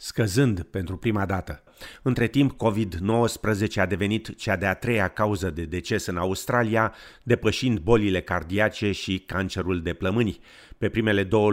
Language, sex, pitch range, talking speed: Romanian, male, 95-115 Hz, 140 wpm